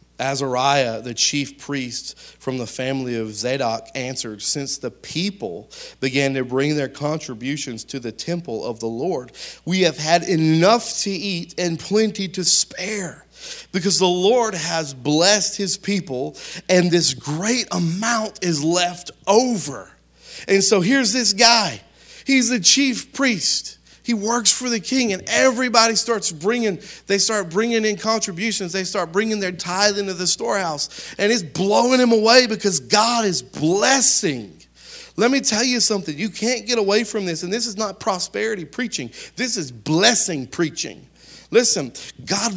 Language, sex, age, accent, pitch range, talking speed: English, male, 40-59, American, 145-220 Hz, 155 wpm